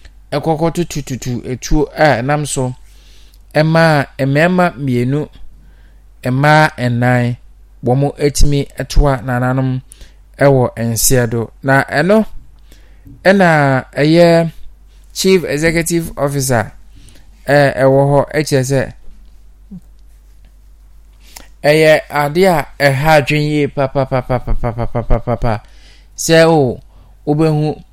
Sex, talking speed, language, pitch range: male, 110 wpm, English, 125-150 Hz